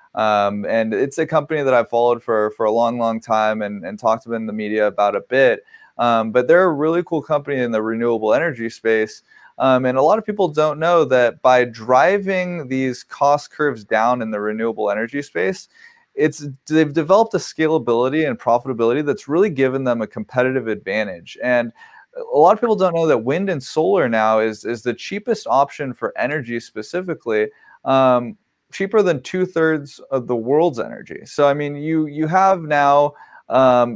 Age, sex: 20-39, male